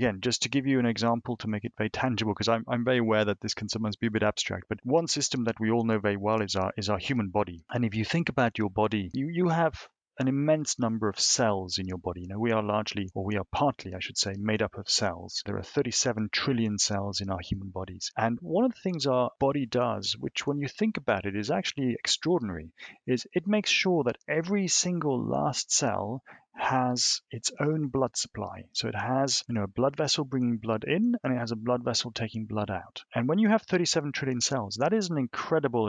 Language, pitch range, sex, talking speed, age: English, 105-140 Hz, male, 240 wpm, 30-49